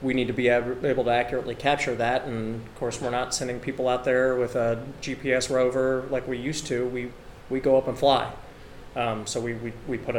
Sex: male